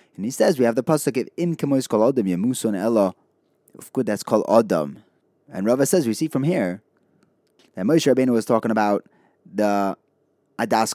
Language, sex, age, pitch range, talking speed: English, male, 20-39, 110-165 Hz, 175 wpm